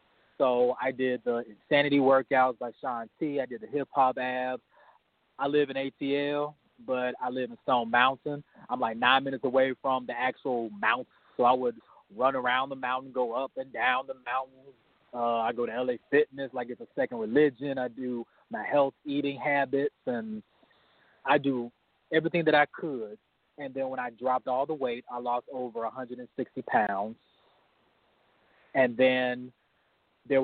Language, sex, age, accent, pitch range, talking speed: English, male, 30-49, American, 120-140 Hz, 170 wpm